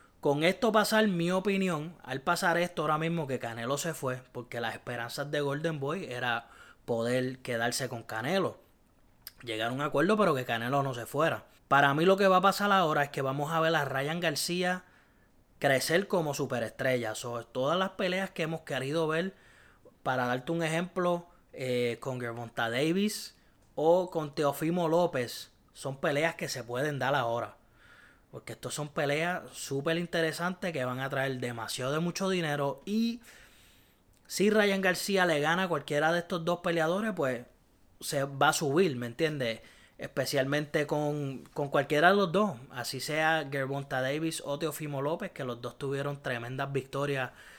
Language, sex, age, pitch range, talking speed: Spanish, male, 20-39, 125-170 Hz, 170 wpm